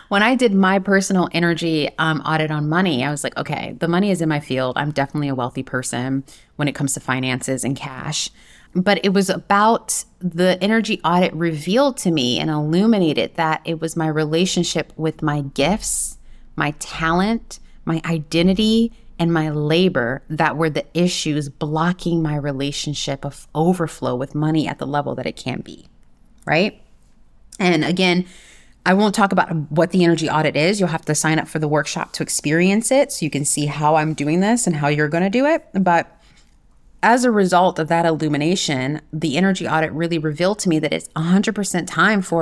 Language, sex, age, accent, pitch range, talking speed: English, female, 30-49, American, 150-185 Hz, 190 wpm